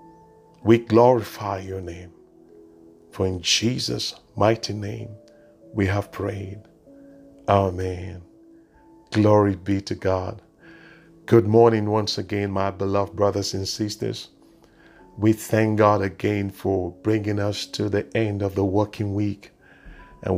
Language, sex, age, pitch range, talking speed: English, male, 50-69, 95-115 Hz, 120 wpm